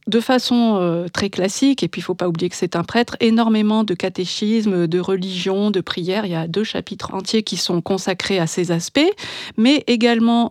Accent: French